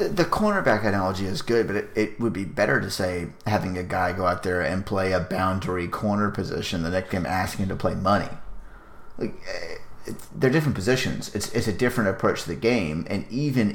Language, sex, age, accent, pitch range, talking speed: English, male, 30-49, American, 90-105 Hz, 205 wpm